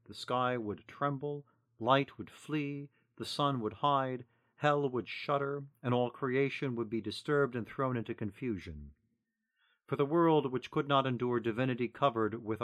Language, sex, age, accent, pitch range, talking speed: English, male, 50-69, American, 110-140 Hz, 160 wpm